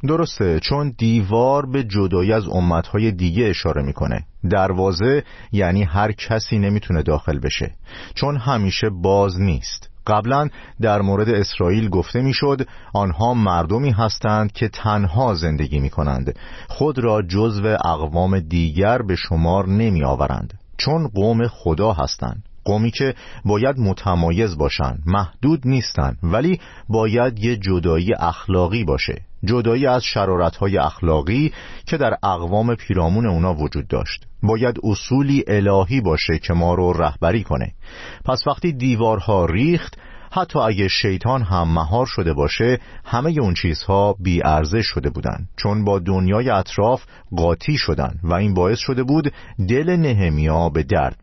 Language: Persian